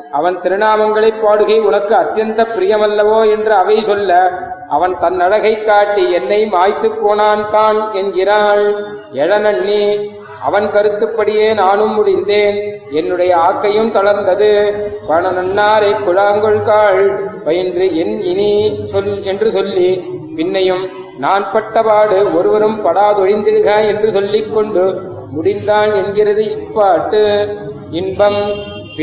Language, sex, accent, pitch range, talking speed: Tamil, male, native, 190-215 Hz, 85 wpm